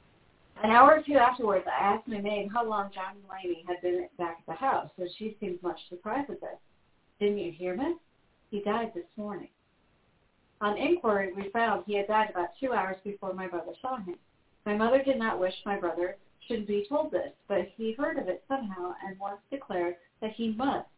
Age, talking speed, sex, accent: 40-59, 205 wpm, female, American